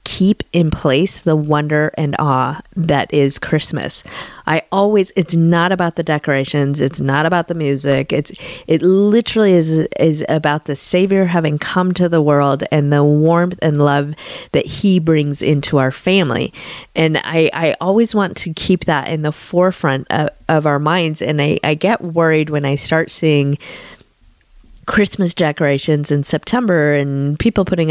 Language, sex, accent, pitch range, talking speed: English, female, American, 150-185 Hz, 165 wpm